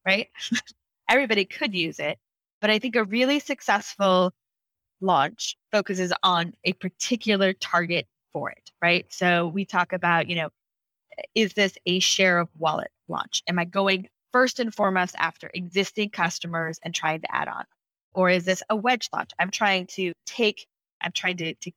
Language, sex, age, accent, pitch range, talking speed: English, female, 20-39, American, 170-210 Hz, 170 wpm